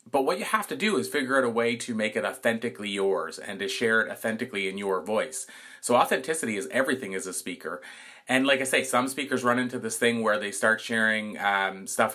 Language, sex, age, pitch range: English, male, 30-49, 100-120 Hz